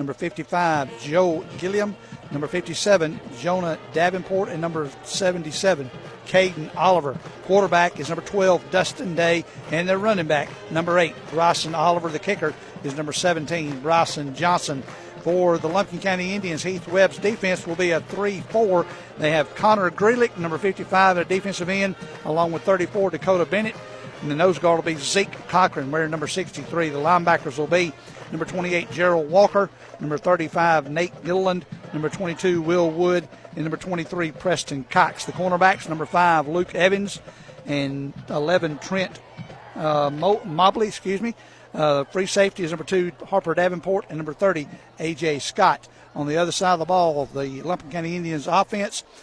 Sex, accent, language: male, American, English